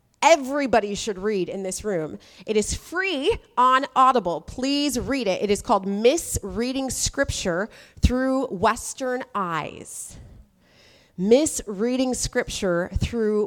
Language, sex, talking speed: English, female, 110 wpm